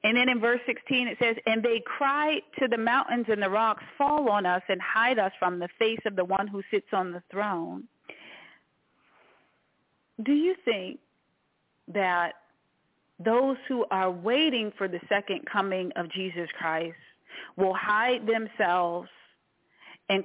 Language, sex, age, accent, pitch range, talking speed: English, female, 40-59, American, 195-275 Hz, 155 wpm